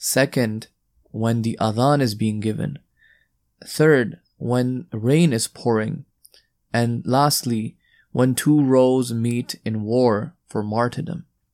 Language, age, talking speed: English, 20-39, 115 wpm